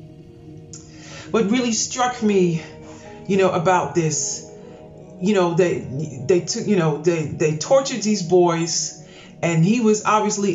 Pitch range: 155-190 Hz